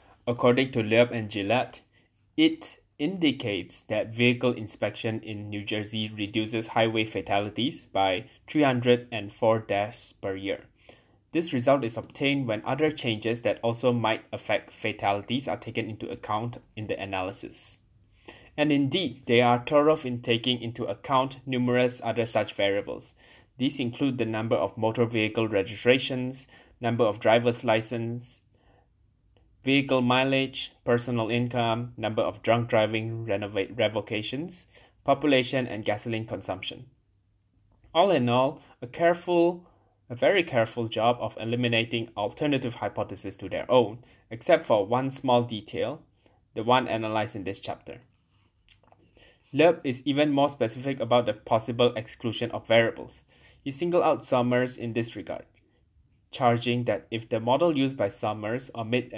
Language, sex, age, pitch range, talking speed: English, male, 20-39, 105-125 Hz, 135 wpm